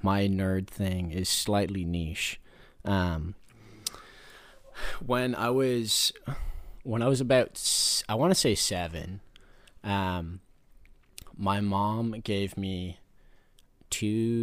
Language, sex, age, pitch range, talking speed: English, male, 30-49, 90-105 Hz, 105 wpm